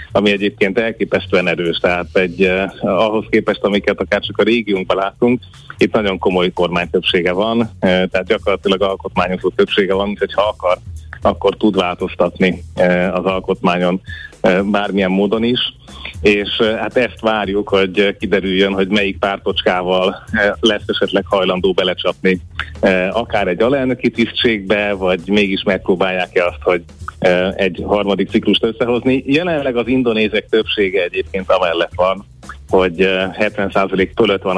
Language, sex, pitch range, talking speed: Hungarian, male, 90-105 Hz, 125 wpm